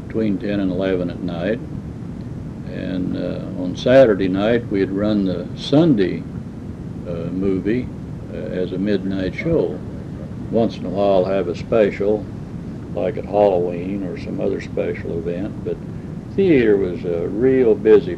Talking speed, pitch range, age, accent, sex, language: 140 wpm, 95-110 Hz, 60-79, American, male, English